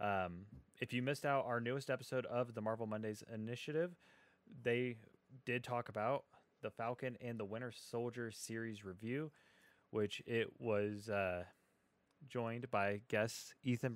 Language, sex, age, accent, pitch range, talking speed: English, male, 20-39, American, 100-125 Hz, 140 wpm